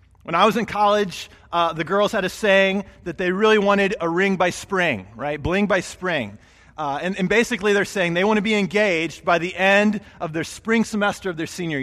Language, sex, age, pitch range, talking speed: English, male, 30-49, 175-230 Hz, 225 wpm